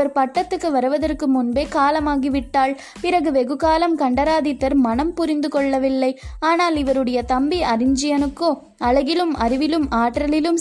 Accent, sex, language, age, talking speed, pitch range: native, female, Tamil, 20-39, 100 wpm, 255-315 Hz